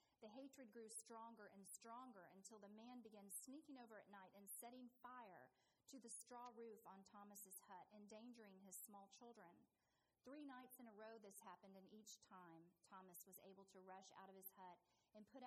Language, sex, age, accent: English, female, 40-59, American